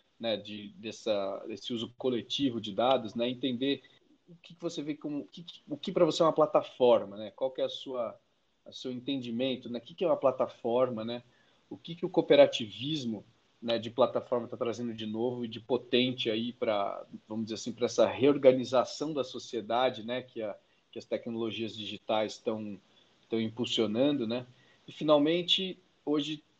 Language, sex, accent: Portuguese, male, Brazilian